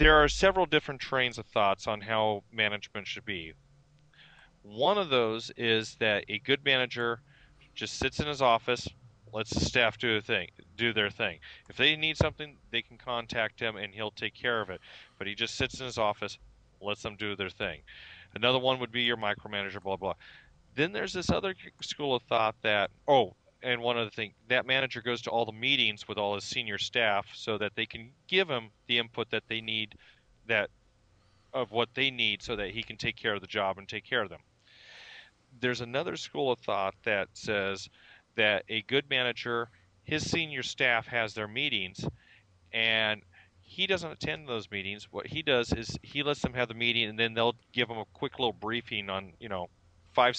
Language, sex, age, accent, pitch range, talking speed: English, male, 40-59, American, 105-125 Hz, 200 wpm